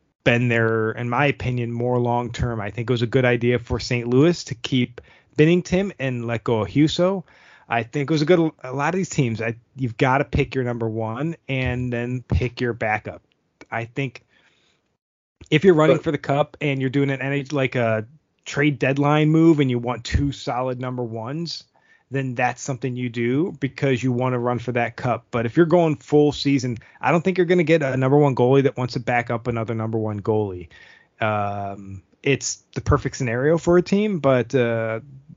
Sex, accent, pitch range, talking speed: male, American, 115-145 Hz, 210 wpm